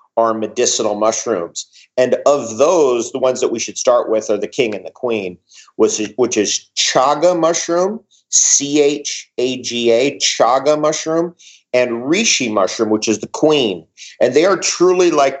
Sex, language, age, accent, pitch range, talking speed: male, English, 40-59, American, 115-170 Hz, 150 wpm